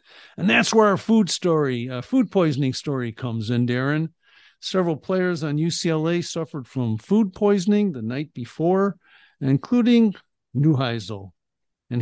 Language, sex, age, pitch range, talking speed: English, male, 50-69, 130-180 Hz, 130 wpm